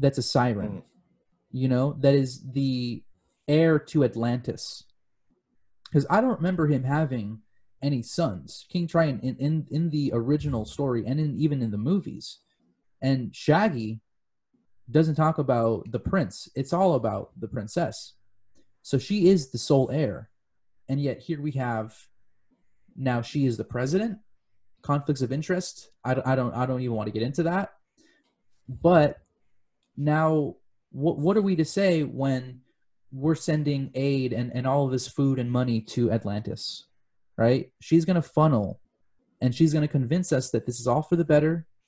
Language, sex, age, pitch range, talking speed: English, male, 20-39, 120-155 Hz, 165 wpm